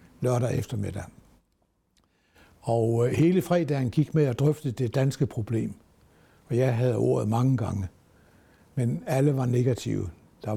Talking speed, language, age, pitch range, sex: 130 wpm, Danish, 60-79, 110-150 Hz, male